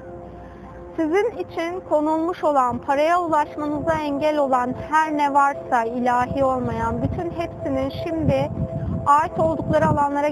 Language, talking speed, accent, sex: Turkish, 110 wpm, native, female